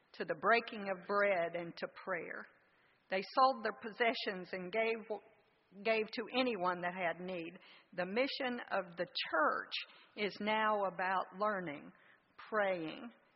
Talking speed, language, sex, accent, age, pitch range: 135 wpm, English, female, American, 50-69, 175-225 Hz